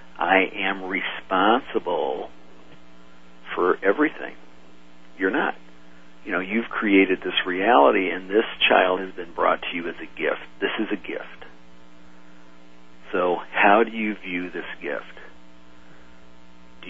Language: English